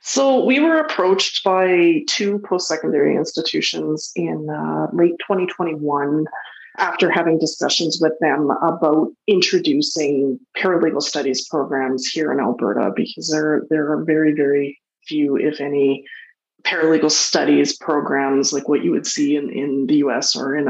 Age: 20-39